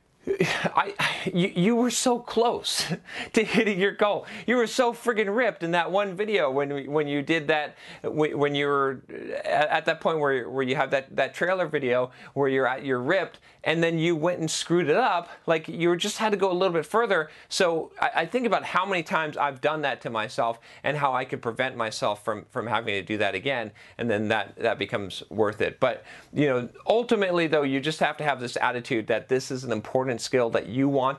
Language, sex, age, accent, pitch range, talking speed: English, male, 40-59, American, 130-165 Hz, 225 wpm